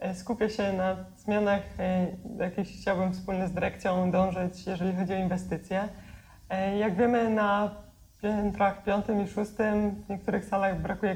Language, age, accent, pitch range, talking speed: Polish, 20-39, native, 175-200 Hz, 135 wpm